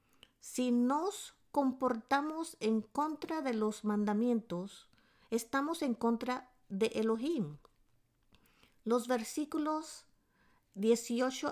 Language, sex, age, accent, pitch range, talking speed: English, female, 50-69, American, 220-280 Hz, 85 wpm